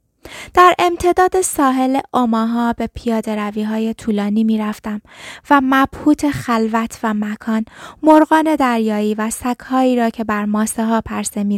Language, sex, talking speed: Persian, female, 135 wpm